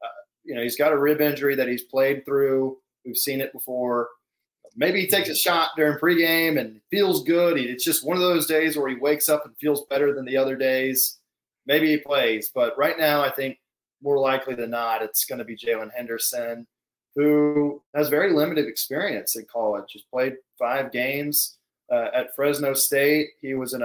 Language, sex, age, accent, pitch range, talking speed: English, male, 20-39, American, 120-150 Hz, 195 wpm